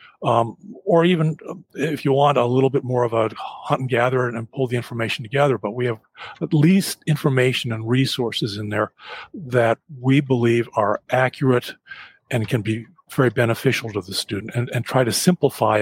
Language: English